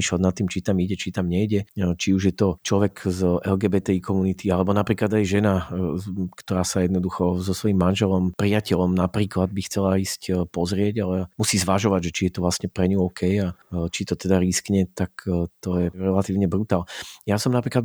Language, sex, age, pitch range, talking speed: Slovak, male, 40-59, 90-105 Hz, 185 wpm